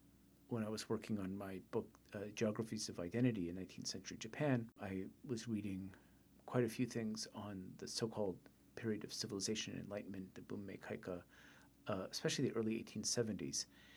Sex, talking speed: male, 170 wpm